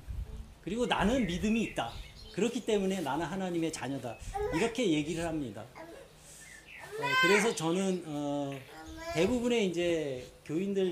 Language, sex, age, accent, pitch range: Korean, male, 40-59, native, 140-190 Hz